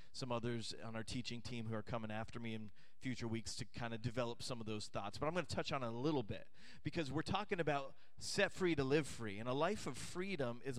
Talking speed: 260 wpm